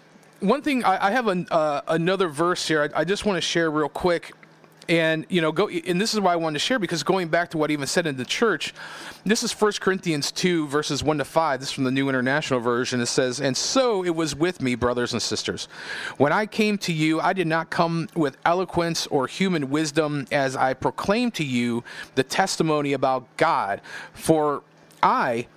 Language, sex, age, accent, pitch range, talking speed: English, male, 40-59, American, 150-215 Hz, 210 wpm